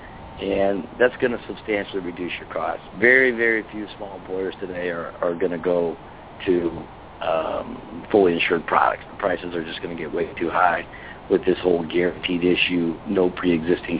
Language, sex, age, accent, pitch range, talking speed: English, male, 50-69, American, 95-120 Hz, 175 wpm